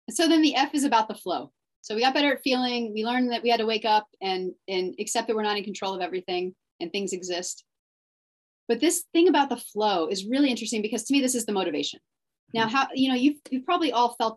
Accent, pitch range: American, 190-250 Hz